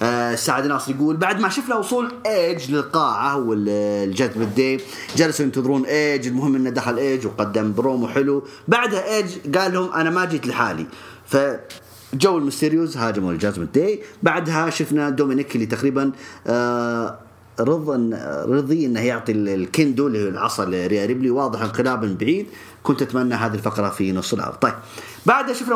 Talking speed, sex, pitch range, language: 145 wpm, male, 105-140 Hz, English